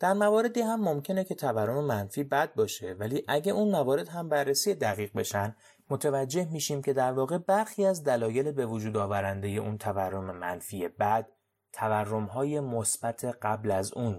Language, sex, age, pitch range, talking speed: Persian, male, 30-49, 105-150 Hz, 160 wpm